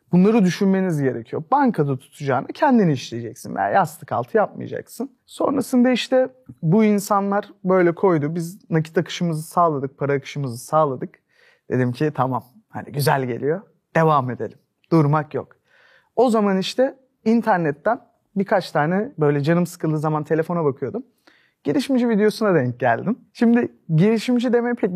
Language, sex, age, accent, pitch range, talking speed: Turkish, male, 40-59, native, 155-235 Hz, 130 wpm